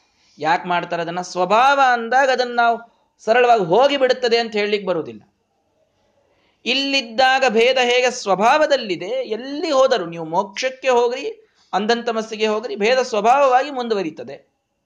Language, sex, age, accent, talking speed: Kannada, male, 30-49, native, 105 wpm